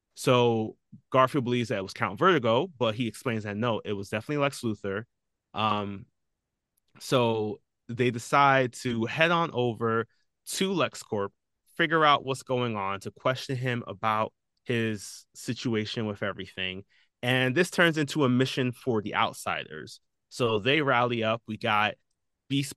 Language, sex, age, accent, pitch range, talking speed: English, male, 20-39, American, 105-130 Hz, 150 wpm